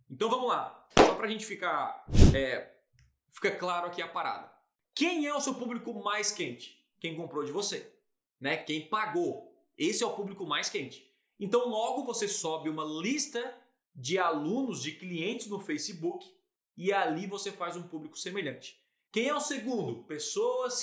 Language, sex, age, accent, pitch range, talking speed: Portuguese, male, 20-39, Brazilian, 165-235 Hz, 165 wpm